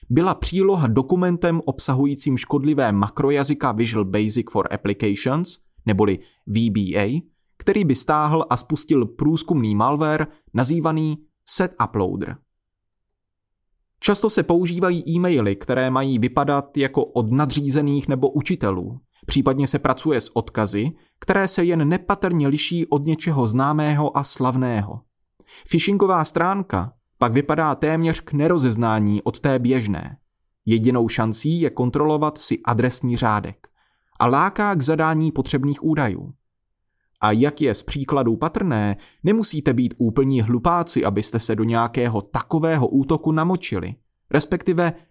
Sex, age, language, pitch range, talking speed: male, 30-49, Czech, 115-155 Hz, 120 wpm